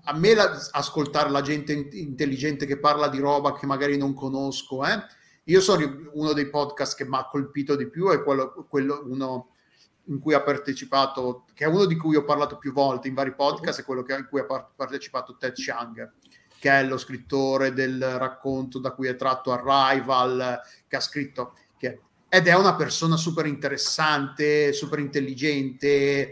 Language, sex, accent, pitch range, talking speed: Italian, male, native, 135-155 Hz, 180 wpm